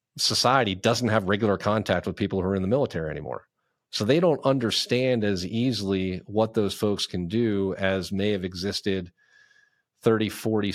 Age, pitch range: 40-59, 95-115 Hz